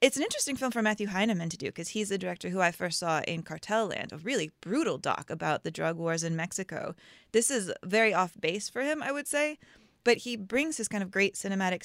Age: 20-39